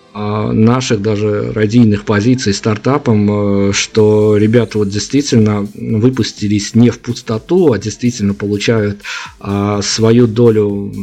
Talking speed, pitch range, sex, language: 100 wpm, 105-120 Hz, male, Russian